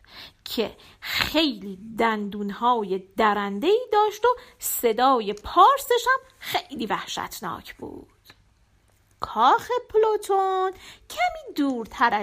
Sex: female